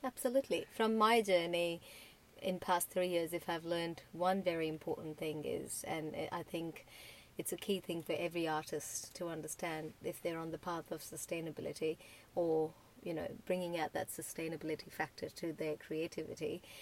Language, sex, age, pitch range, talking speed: English, female, 30-49, 160-190 Hz, 165 wpm